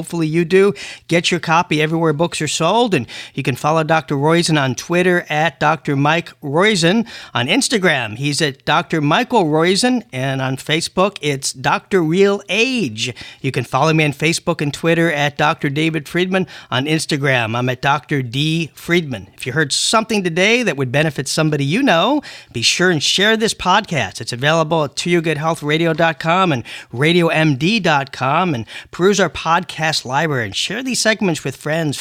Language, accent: English, American